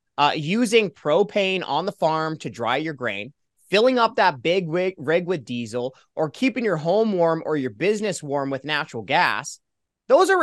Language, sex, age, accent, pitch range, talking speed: English, male, 30-49, American, 160-235 Hz, 185 wpm